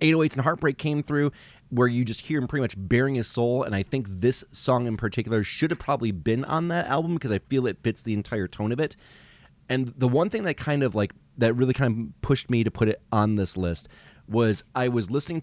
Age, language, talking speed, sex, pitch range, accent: 30-49, English, 245 wpm, male, 100-130 Hz, American